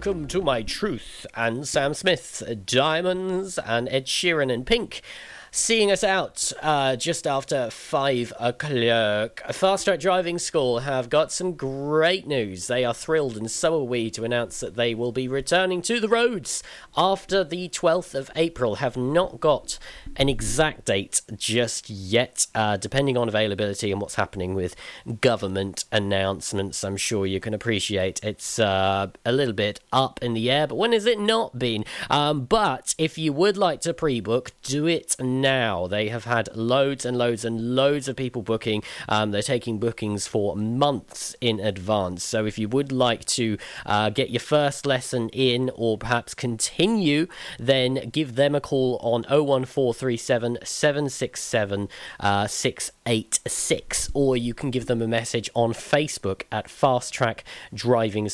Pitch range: 110-145 Hz